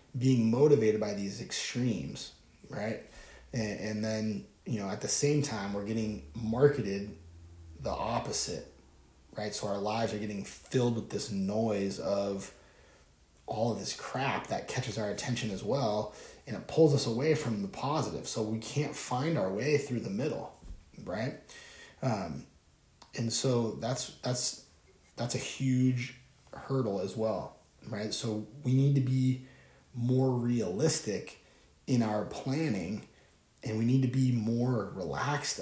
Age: 30-49